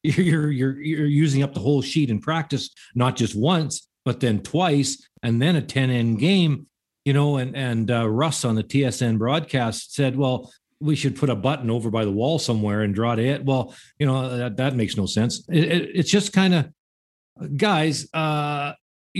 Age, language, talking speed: 50-69, English, 200 wpm